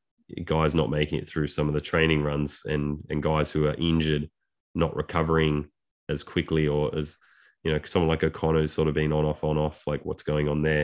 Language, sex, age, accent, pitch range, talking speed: English, male, 20-39, Australian, 75-80 Hz, 215 wpm